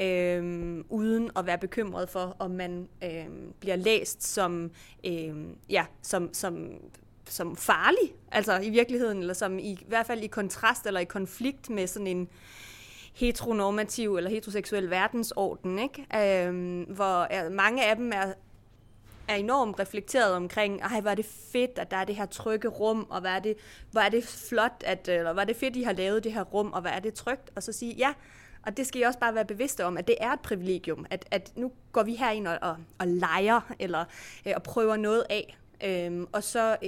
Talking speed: 200 wpm